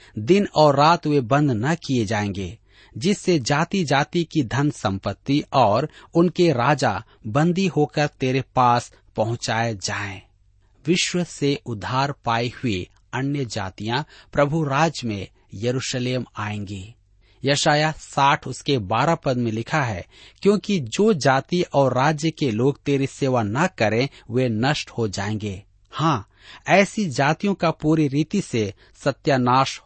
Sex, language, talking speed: male, Hindi, 135 wpm